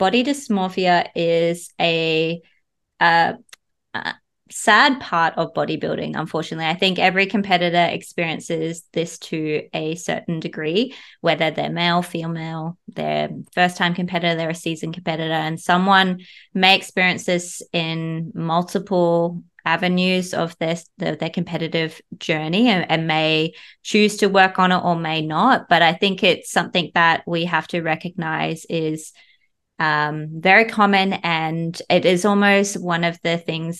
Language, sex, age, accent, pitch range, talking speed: English, female, 20-39, Australian, 160-180 Hz, 140 wpm